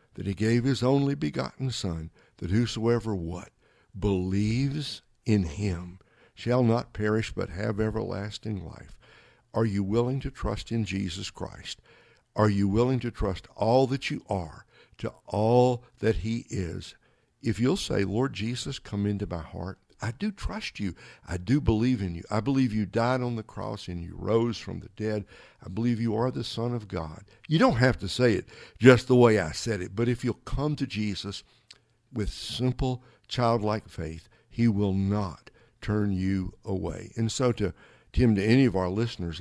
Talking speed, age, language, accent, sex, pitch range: 180 wpm, 60-79, English, American, male, 100-120 Hz